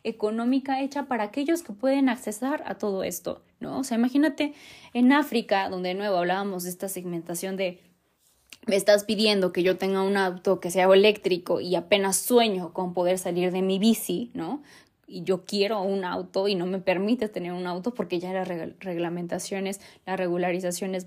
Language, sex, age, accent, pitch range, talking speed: Spanish, female, 20-39, Mexican, 185-255 Hz, 180 wpm